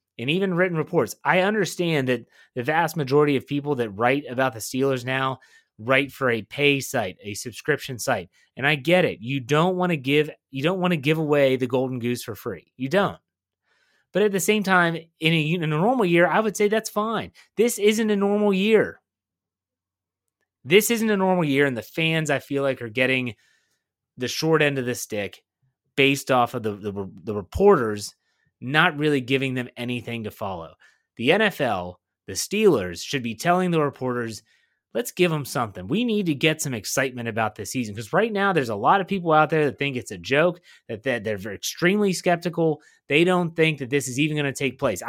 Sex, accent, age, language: male, American, 30-49, English